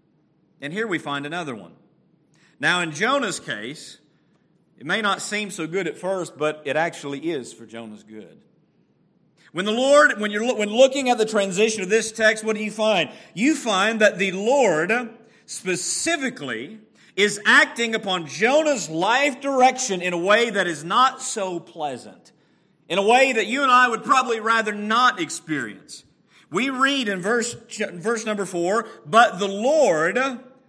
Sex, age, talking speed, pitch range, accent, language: male, 40-59, 165 wpm, 170-225 Hz, American, English